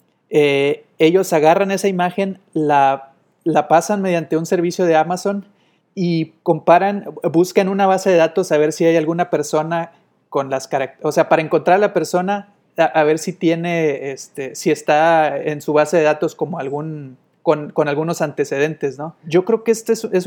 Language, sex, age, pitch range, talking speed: Spanish, male, 30-49, 155-185 Hz, 180 wpm